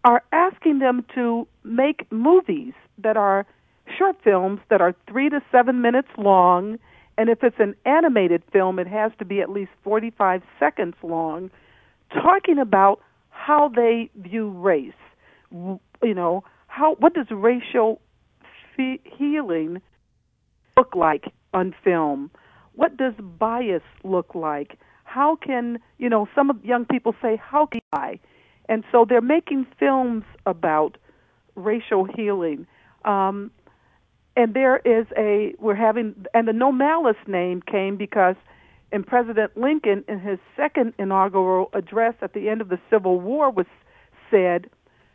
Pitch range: 190-255 Hz